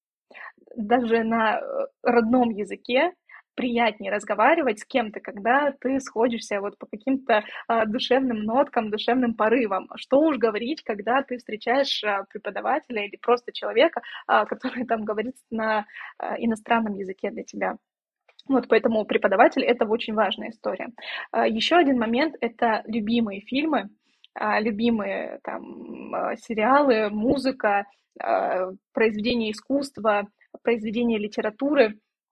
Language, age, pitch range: Russian, 20-39, 220-260 Hz